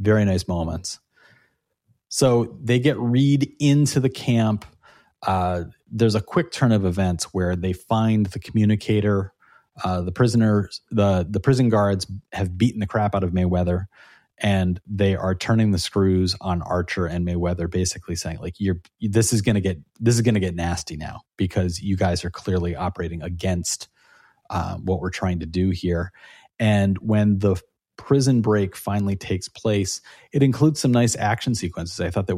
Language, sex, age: English, male, 30-49